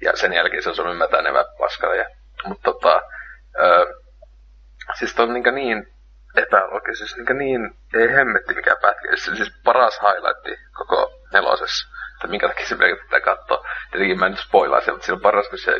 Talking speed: 180 wpm